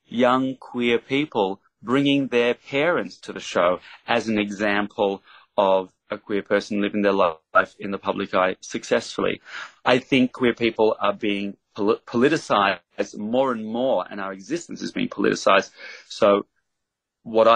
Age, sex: 30-49, male